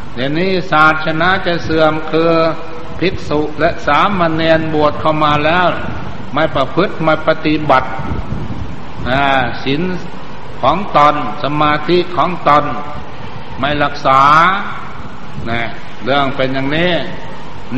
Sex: male